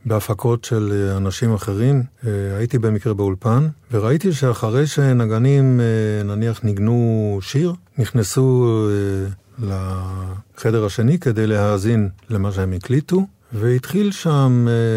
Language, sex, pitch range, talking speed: Hebrew, male, 100-125 Hz, 90 wpm